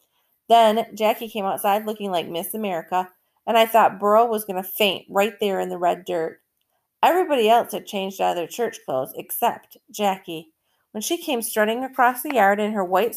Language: English